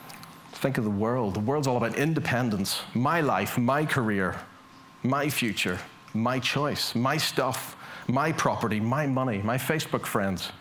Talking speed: 145 wpm